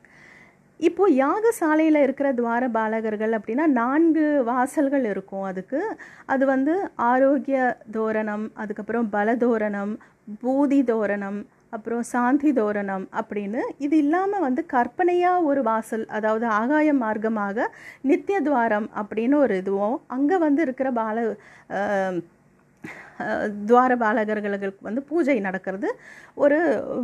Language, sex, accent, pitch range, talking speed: Tamil, female, native, 215-280 Hz, 105 wpm